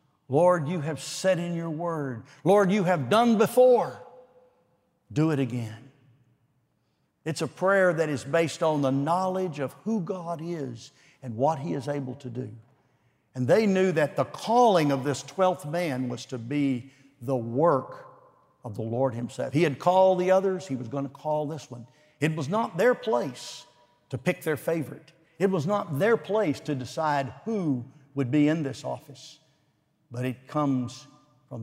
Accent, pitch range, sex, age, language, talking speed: American, 135-170 Hz, male, 60-79, English, 175 wpm